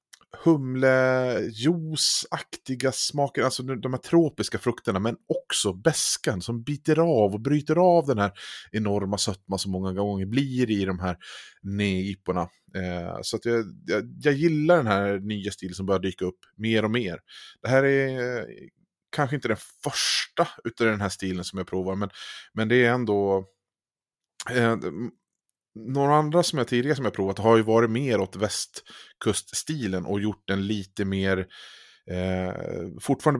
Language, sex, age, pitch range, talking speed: Swedish, male, 30-49, 95-130 Hz, 160 wpm